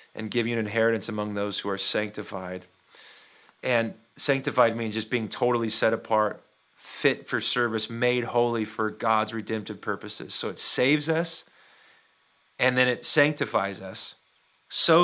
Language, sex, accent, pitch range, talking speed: English, male, American, 110-140 Hz, 150 wpm